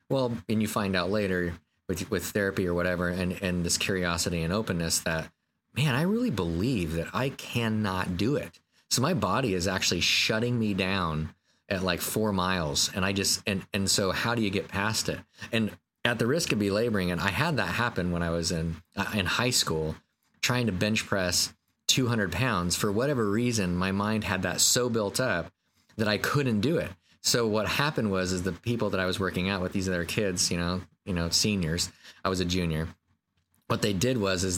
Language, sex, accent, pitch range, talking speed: English, male, American, 90-105 Hz, 210 wpm